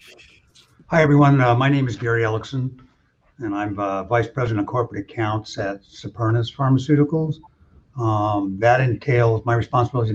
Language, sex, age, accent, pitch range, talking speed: English, male, 60-79, American, 105-130 Hz, 140 wpm